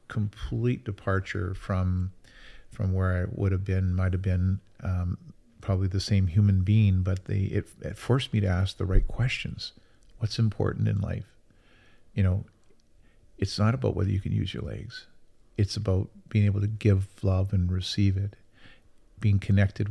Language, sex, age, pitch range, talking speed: English, male, 50-69, 95-105 Hz, 170 wpm